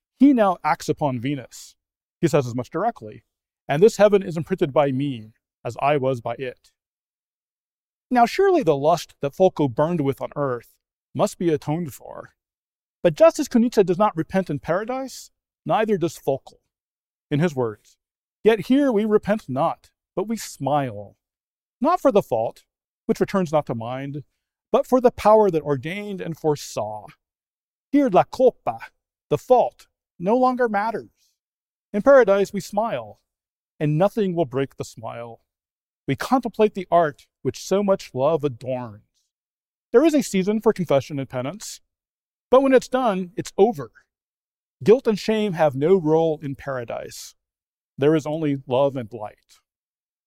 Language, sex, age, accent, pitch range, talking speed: English, male, 40-59, American, 140-215 Hz, 155 wpm